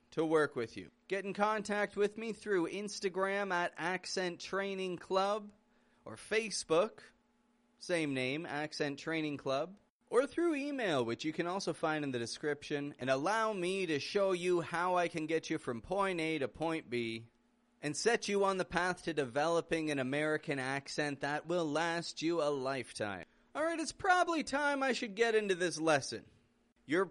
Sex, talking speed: male, 175 wpm